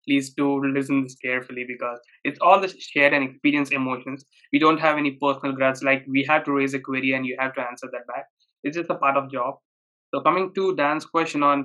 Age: 20-39